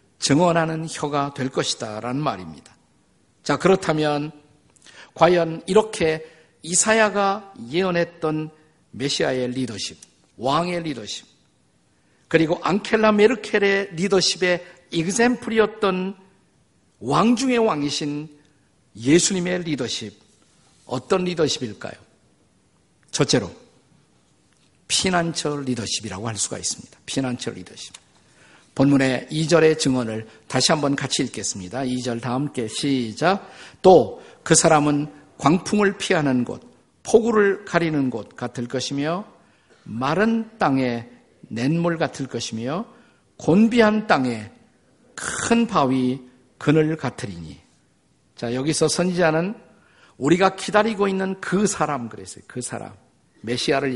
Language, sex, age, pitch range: Korean, male, 50-69, 125-185 Hz